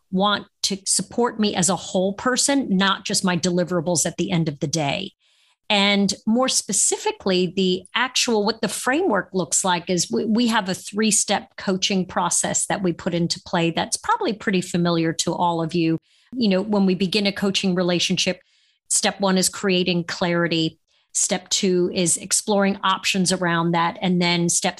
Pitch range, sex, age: 175-205 Hz, female, 40-59